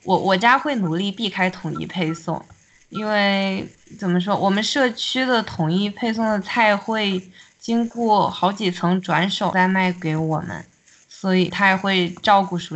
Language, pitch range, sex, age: Chinese, 170-200 Hz, female, 20-39